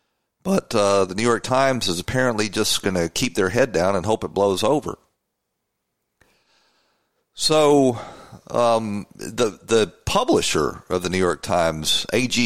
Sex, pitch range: male, 95-145 Hz